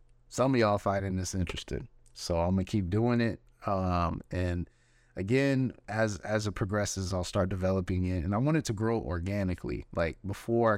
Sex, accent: male, American